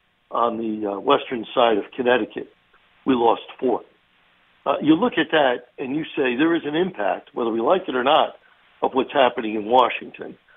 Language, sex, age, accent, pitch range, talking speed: English, male, 60-79, American, 120-155 Hz, 185 wpm